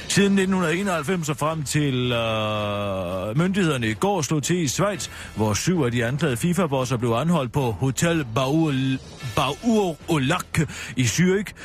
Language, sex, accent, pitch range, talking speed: Danish, male, native, 115-170 Hz, 130 wpm